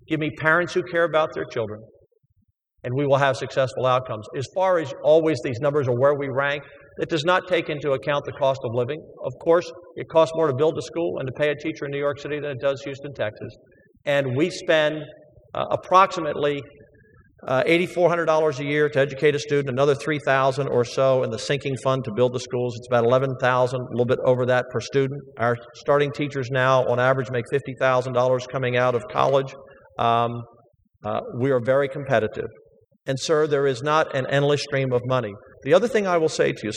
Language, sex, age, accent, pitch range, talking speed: English, male, 50-69, American, 125-150 Hz, 210 wpm